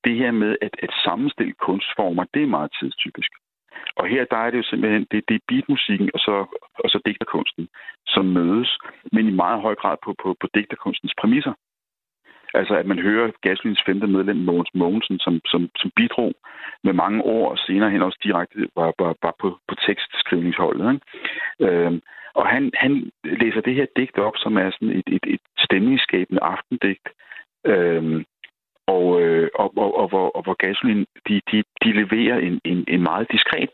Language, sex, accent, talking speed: Danish, male, native, 175 wpm